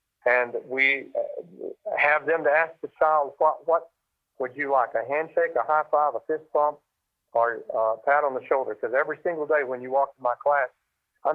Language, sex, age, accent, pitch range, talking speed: English, male, 50-69, American, 130-175 Hz, 200 wpm